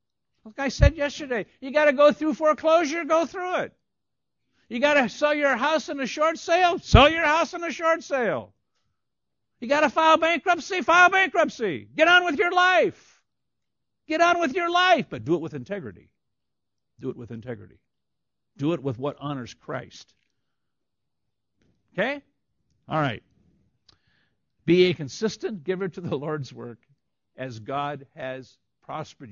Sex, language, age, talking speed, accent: male, English, 60-79, 150 wpm, American